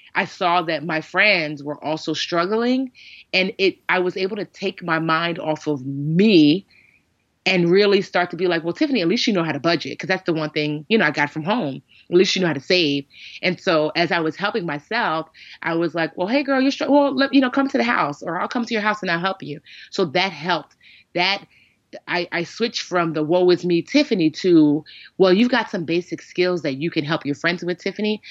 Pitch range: 155-195 Hz